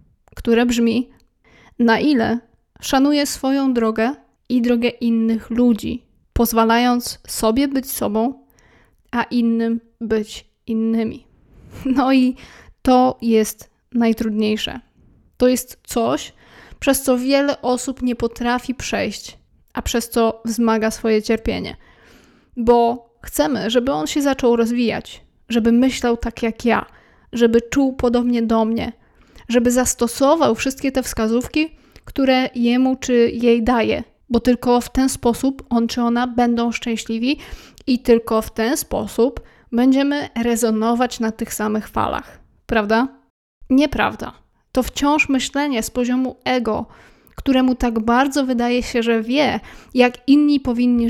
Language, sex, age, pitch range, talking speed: Polish, female, 20-39, 230-255 Hz, 125 wpm